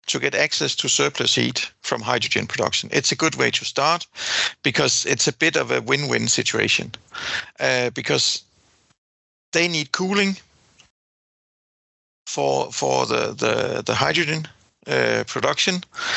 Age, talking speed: 50-69, 135 wpm